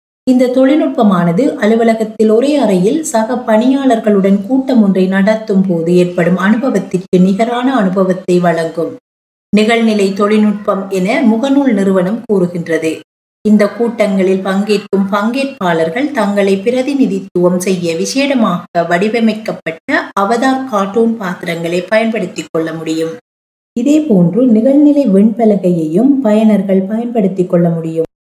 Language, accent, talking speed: Tamil, native, 90 wpm